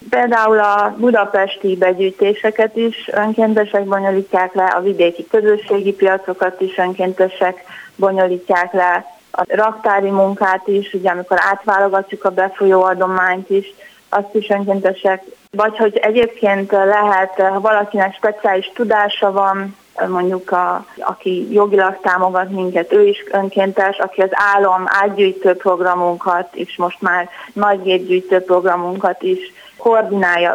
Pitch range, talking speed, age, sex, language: 185-205 Hz, 120 wpm, 30-49, female, Hungarian